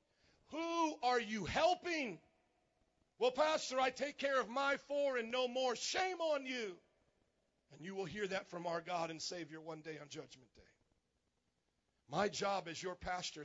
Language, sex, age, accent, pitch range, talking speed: English, male, 40-59, American, 175-230 Hz, 170 wpm